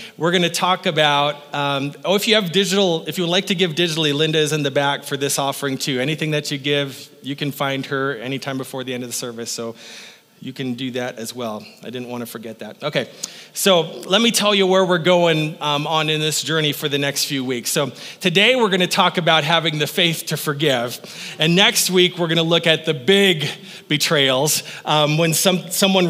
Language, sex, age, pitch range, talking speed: English, male, 30-49, 145-180 Hz, 230 wpm